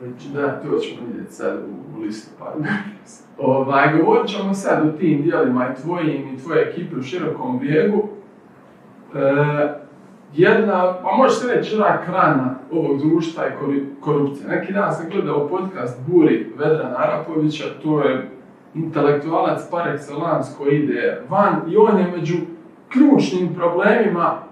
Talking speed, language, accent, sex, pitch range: 135 wpm, Croatian, Serbian, male, 150-205 Hz